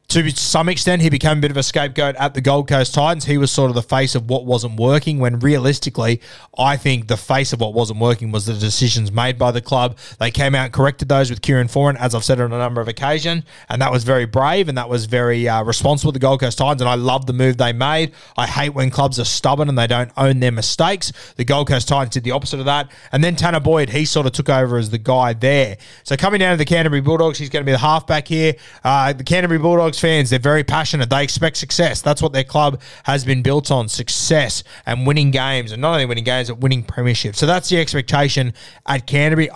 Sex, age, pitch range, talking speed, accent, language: male, 20-39, 125-145 Hz, 250 wpm, Australian, English